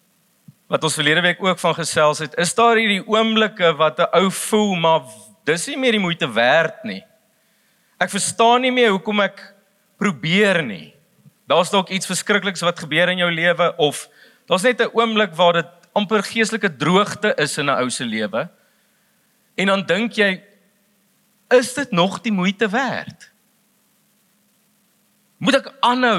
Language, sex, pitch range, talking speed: English, male, 185-235 Hz, 160 wpm